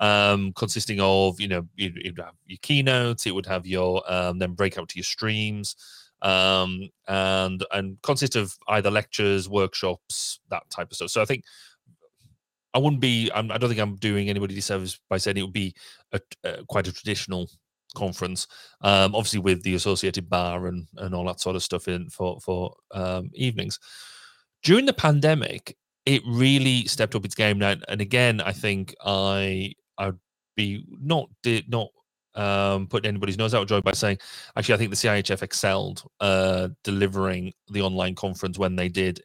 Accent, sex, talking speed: British, male, 180 wpm